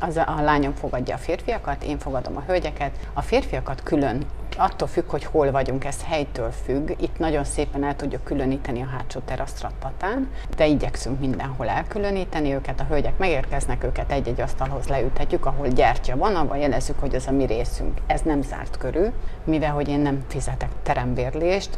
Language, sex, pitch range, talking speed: Hungarian, female, 130-150 Hz, 170 wpm